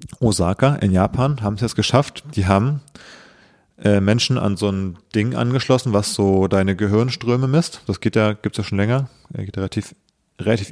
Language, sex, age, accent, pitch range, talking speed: German, male, 30-49, German, 100-120 Hz, 185 wpm